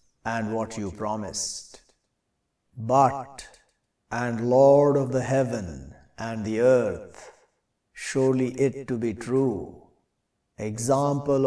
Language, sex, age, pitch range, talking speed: English, male, 60-79, 110-135 Hz, 100 wpm